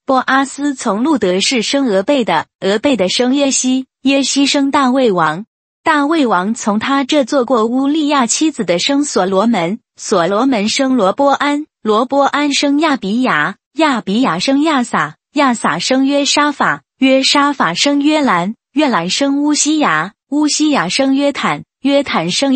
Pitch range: 230-285 Hz